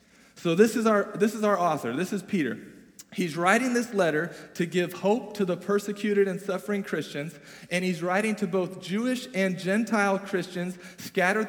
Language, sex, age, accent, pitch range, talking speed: English, male, 40-59, American, 160-205 Hz, 180 wpm